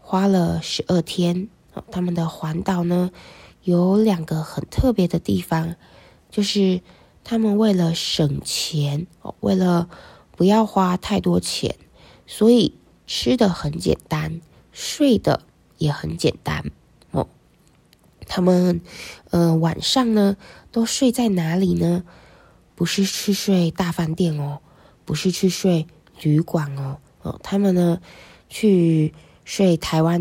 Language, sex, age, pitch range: Chinese, female, 20-39, 165-205 Hz